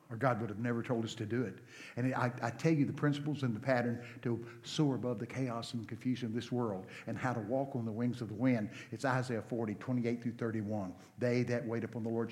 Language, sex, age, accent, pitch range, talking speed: English, male, 60-79, American, 115-140 Hz, 255 wpm